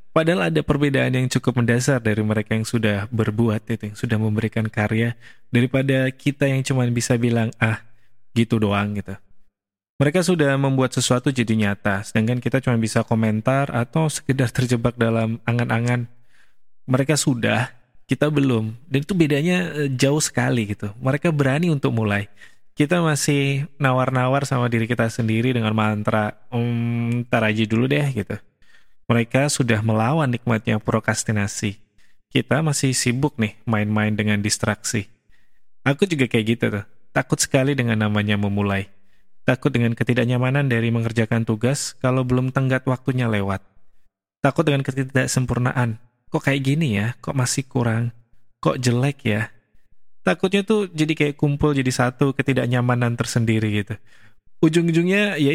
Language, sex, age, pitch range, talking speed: English, male, 20-39, 110-140 Hz, 140 wpm